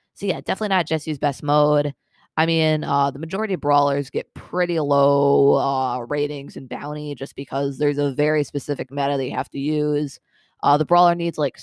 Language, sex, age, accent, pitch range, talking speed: English, female, 20-39, American, 145-165 Hz, 195 wpm